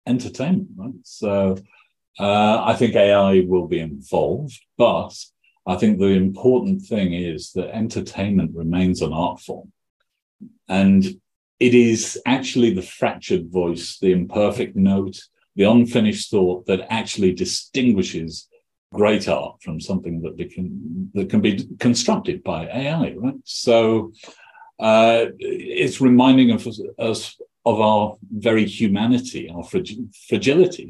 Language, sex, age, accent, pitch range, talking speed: English, male, 50-69, British, 90-125 Hz, 120 wpm